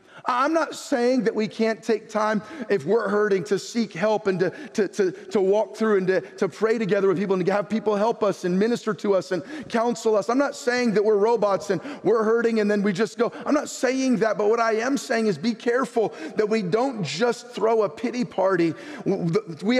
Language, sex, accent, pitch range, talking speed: English, male, American, 165-215 Hz, 230 wpm